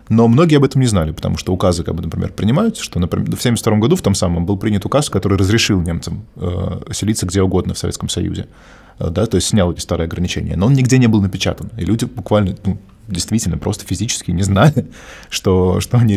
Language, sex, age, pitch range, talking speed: Russian, male, 20-39, 95-120 Hz, 225 wpm